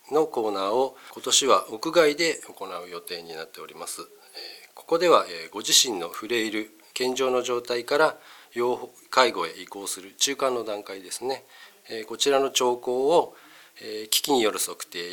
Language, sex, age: Japanese, male, 40-59